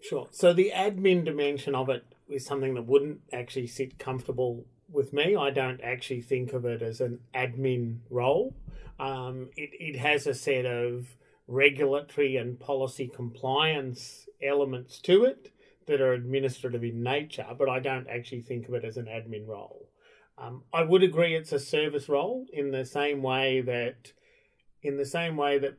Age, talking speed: 30-49, 170 wpm